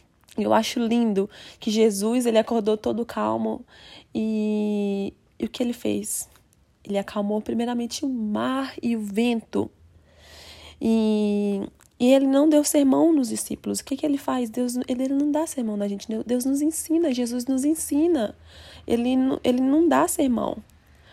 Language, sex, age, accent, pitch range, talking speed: English, female, 20-39, Brazilian, 205-245 Hz, 150 wpm